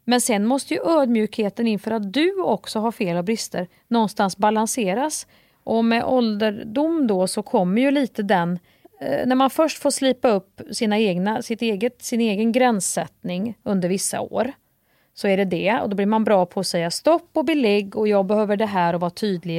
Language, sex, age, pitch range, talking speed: Swedish, female, 30-49, 180-240 Hz, 195 wpm